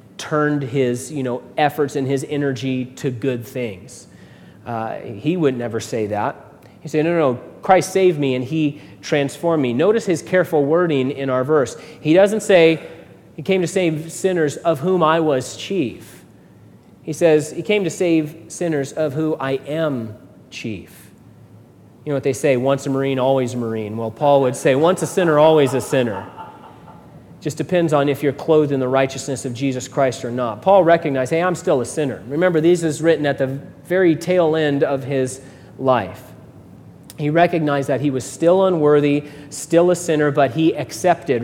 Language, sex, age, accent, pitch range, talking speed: English, male, 30-49, American, 135-165 Hz, 185 wpm